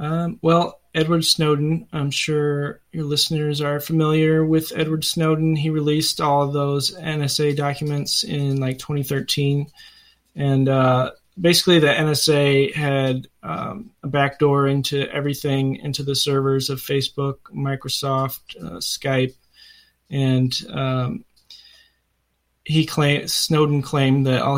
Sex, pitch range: male, 130-150 Hz